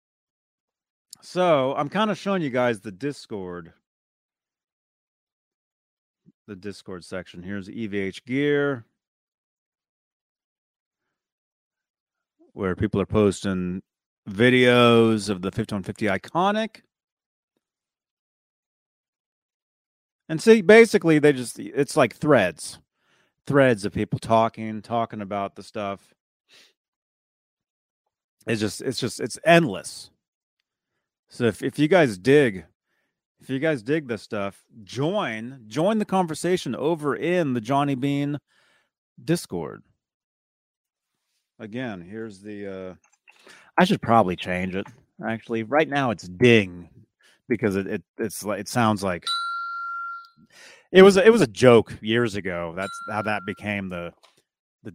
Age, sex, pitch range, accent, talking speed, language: 30-49, male, 100-150 Hz, American, 115 wpm, English